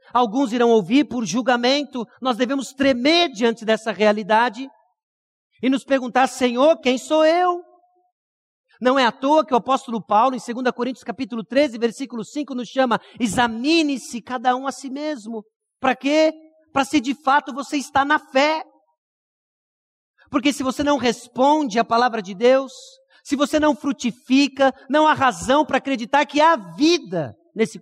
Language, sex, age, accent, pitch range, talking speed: Portuguese, male, 50-69, Brazilian, 195-270 Hz, 155 wpm